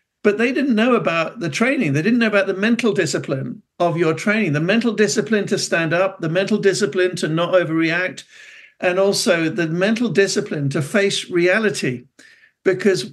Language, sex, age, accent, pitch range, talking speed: English, male, 60-79, British, 160-210 Hz, 175 wpm